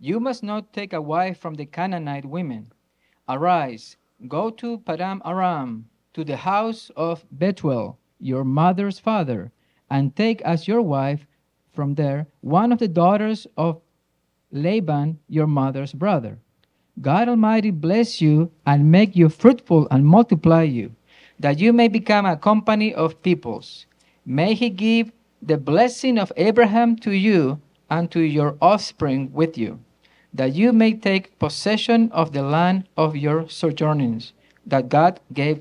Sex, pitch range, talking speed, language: male, 140-205 Hz, 145 wpm, English